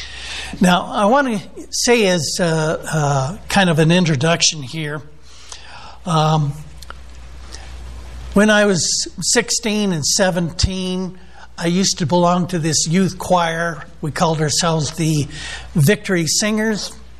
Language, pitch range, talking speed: English, 150-195 Hz, 120 wpm